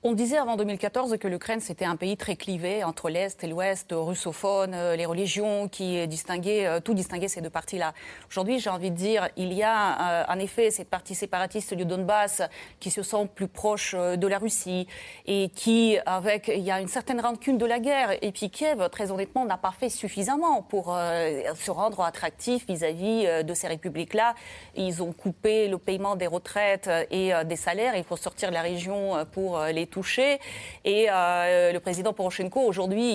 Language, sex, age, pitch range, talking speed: French, female, 30-49, 175-220 Hz, 190 wpm